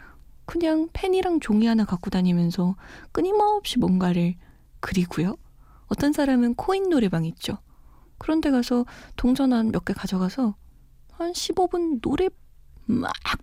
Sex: female